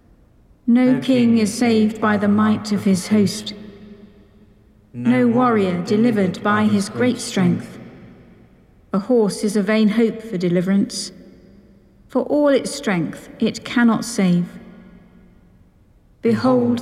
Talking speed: 120 wpm